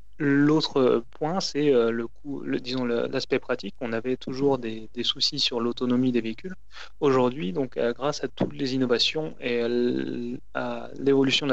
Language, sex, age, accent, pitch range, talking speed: French, male, 20-39, French, 120-135 Hz, 175 wpm